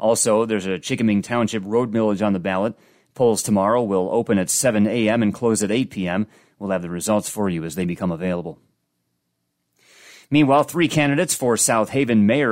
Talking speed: 185 wpm